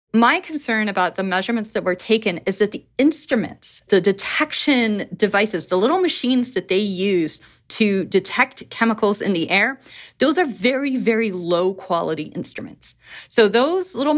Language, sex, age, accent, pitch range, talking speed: English, female, 30-49, American, 190-250 Hz, 155 wpm